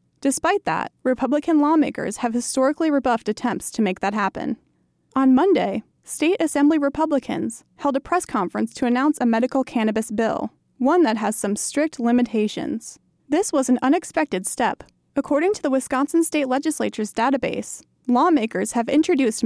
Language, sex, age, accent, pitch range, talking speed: English, female, 20-39, American, 235-295 Hz, 150 wpm